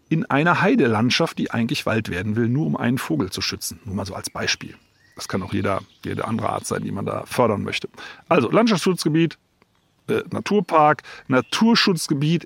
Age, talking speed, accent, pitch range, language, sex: 40-59, 175 wpm, German, 110-165 Hz, German, male